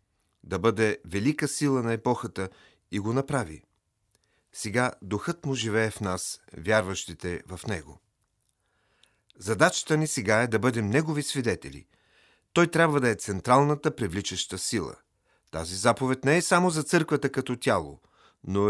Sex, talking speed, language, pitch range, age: male, 140 wpm, Bulgarian, 105-135 Hz, 40-59